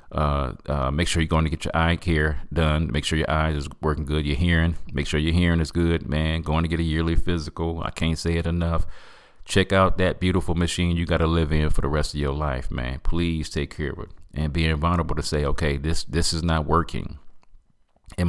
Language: English